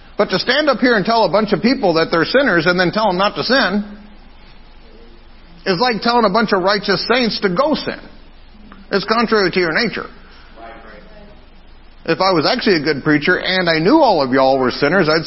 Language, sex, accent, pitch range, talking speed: English, male, American, 180-240 Hz, 210 wpm